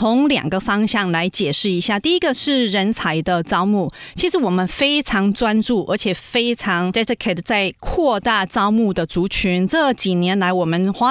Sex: female